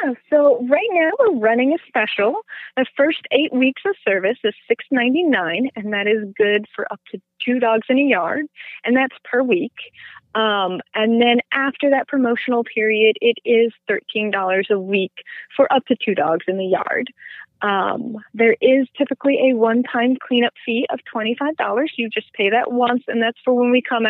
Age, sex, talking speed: 30-49, female, 180 wpm